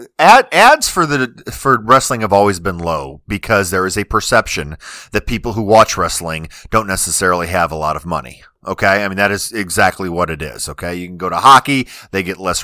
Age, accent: 40-59, American